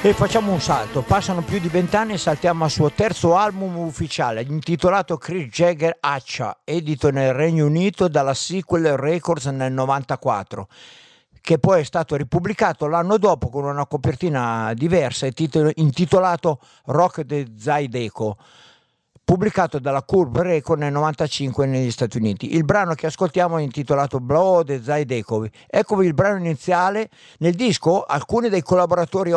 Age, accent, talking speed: 50-69, native, 145 wpm